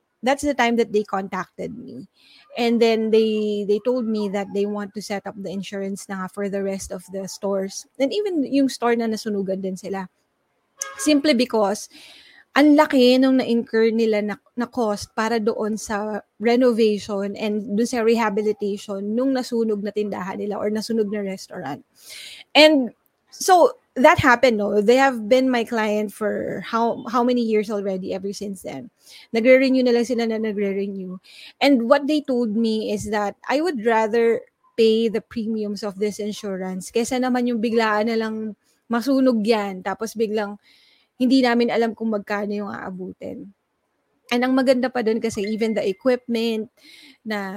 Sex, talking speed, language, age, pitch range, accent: female, 165 wpm, English, 20-39, 205-250 Hz, Filipino